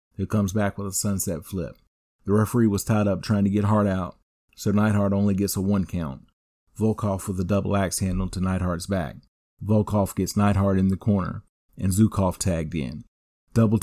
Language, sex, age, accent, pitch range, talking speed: English, male, 40-59, American, 95-105 Hz, 190 wpm